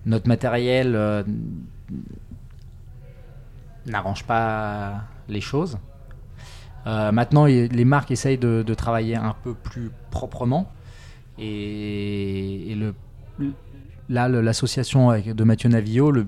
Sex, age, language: male, 20-39, French